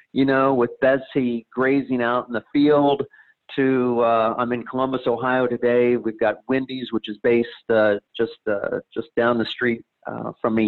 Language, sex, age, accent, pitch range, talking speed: English, male, 40-59, American, 110-125 Hz, 175 wpm